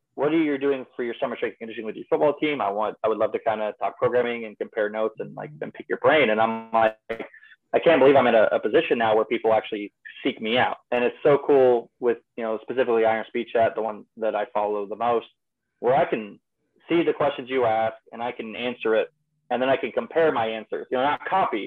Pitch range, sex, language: 110-155 Hz, male, English